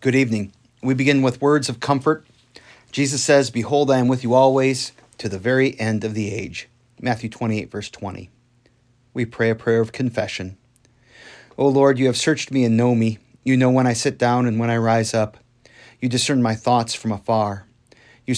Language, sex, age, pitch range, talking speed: English, male, 40-59, 115-130 Hz, 195 wpm